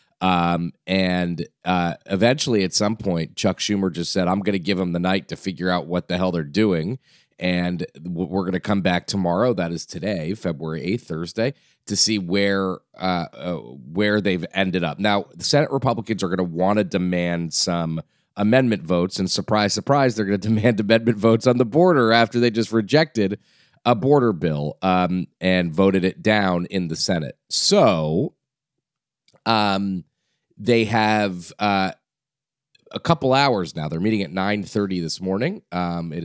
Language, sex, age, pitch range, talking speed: English, male, 30-49, 90-105 Hz, 175 wpm